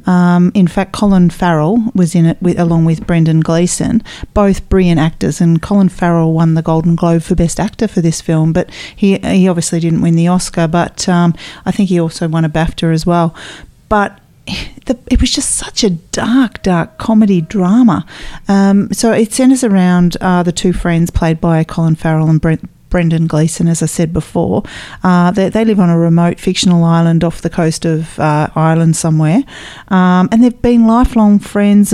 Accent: Australian